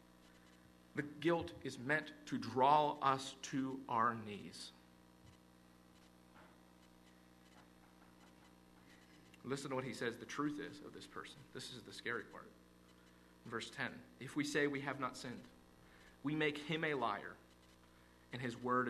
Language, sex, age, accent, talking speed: English, male, 40-59, American, 135 wpm